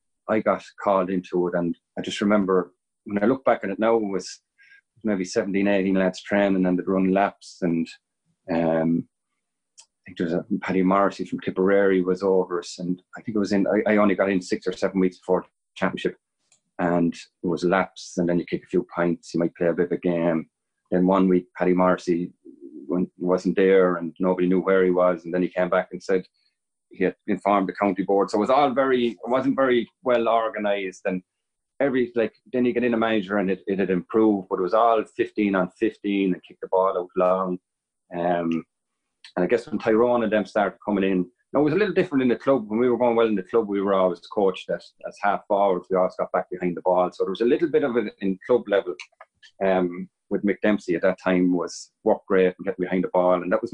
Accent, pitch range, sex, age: Irish, 90-110 Hz, male, 30-49